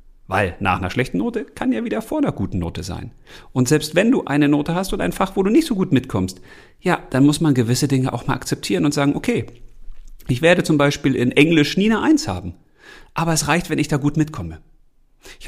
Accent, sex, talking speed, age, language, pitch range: German, male, 235 wpm, 40-59, German, 100-155 Hz